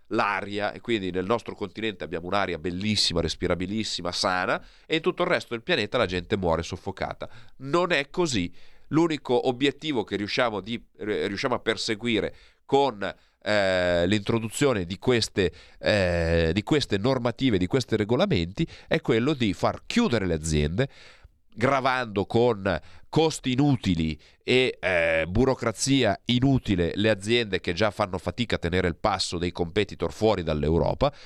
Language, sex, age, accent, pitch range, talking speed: Italian, male, 40-59, native, 90-120 Hz, 140 wpm